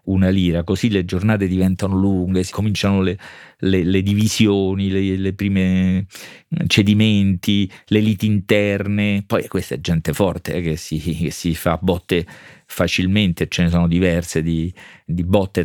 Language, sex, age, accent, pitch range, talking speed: Italian, male, 40-59, native, 90-110 Hz, 155 wpm